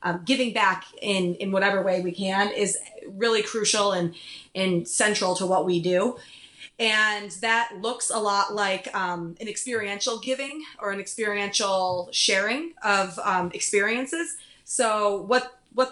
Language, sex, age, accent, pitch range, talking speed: English, female, 20-39, American, 185-220 Hz, 145 wpm